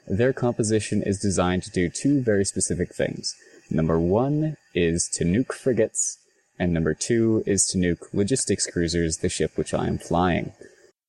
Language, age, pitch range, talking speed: English, 20-39, 90-110 Hz, 160 wpm